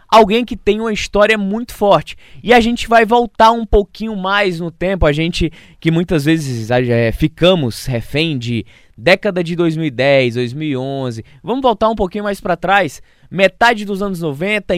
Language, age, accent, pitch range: Portuguese, 20-39, Brazilian, 145-195 Hz